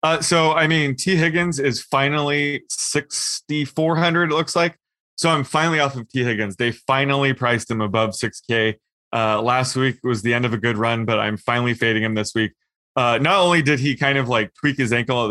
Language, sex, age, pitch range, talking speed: English, male, 20-39, 115-145 Hz, 210 wpm